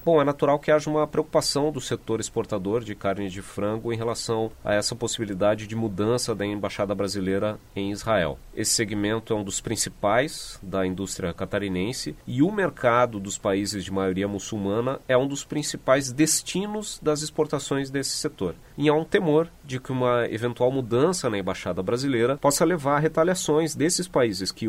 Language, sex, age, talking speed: Portuguese, male, 30-49, 175 wpm